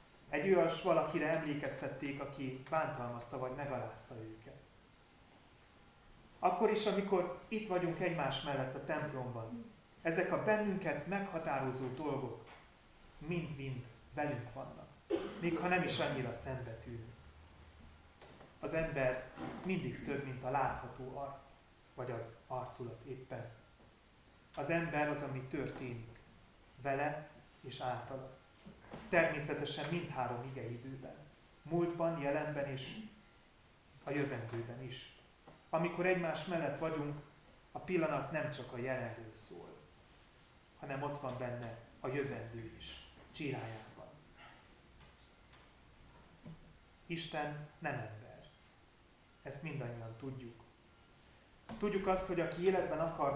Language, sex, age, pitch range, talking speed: Hungarian, male, 30-49, 125-160 Hz, 105 wpm